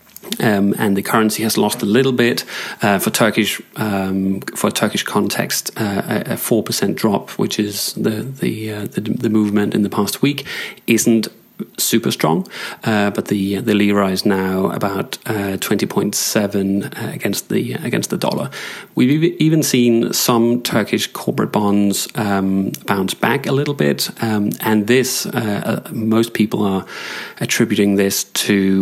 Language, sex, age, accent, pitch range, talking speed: English, male, 30-49, British, 100-115 Hz, 160 wpm